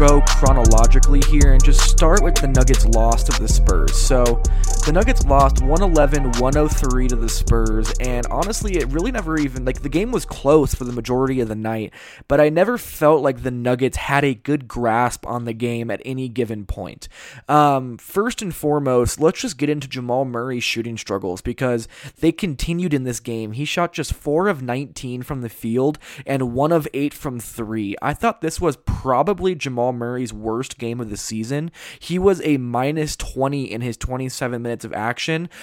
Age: 20-39